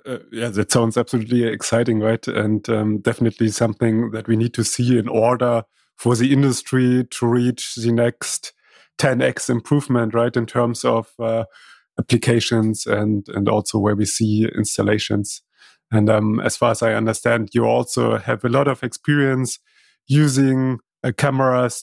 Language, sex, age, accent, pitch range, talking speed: German, male, 30-49, German, 110-125 Hz, 155 wpm